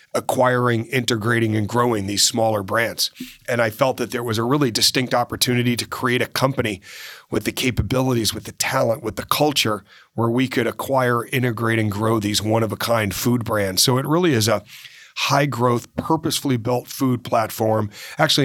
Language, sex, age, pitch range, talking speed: English, male, 40-59, 110-130 Hz, 170 wpm